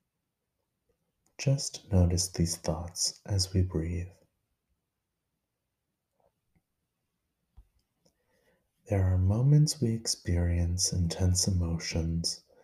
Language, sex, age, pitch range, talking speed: English, male, 30-49, 85-105 Hz, 65 wpm